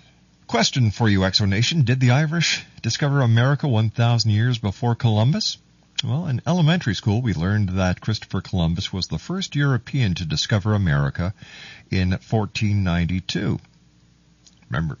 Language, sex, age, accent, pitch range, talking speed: English, male, 50-69, American, 95-140 Hz, 130 wpm